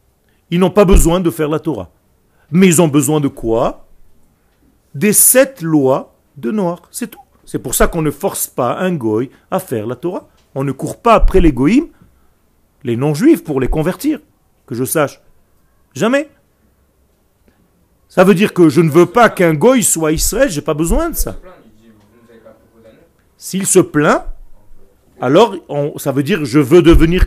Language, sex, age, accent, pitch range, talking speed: French, male, 40-59, French, 135-205 Hz, 175 wpm